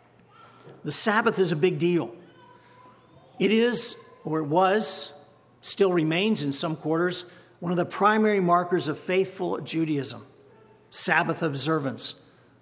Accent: American